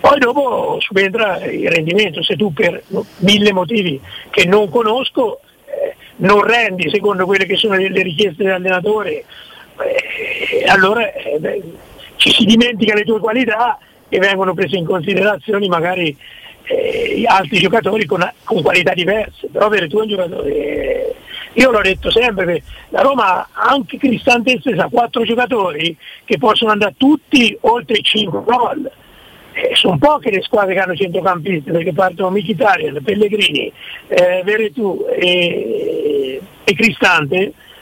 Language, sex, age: Italian, male, 50-69